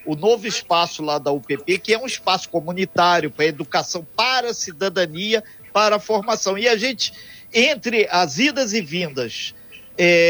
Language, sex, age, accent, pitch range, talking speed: Portuguese, male, 50-69, Brazilian, 170-245 Hz, 165 wpm